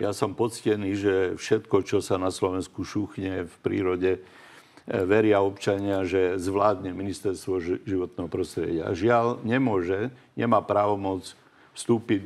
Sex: male